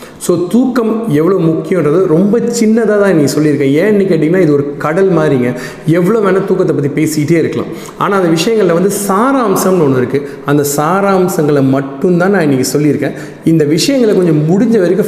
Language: Tamil